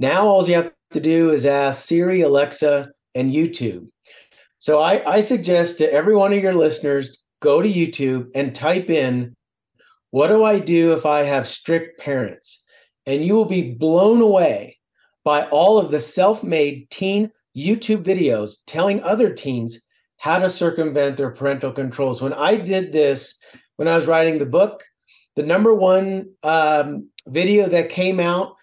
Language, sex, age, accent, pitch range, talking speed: English, male, 40-59, American, 145-190 Hz, 165 wpm